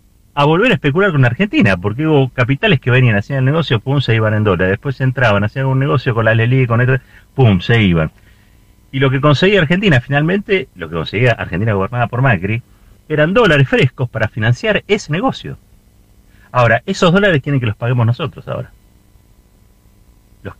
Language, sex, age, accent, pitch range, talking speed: Spanish, male, 40-59, Argentinian, 100-130 Hz, 180 wpm